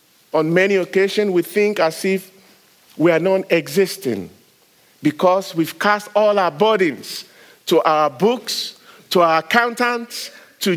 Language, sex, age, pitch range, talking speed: English, male, 50-69, 195-280 Hz, 135 wpm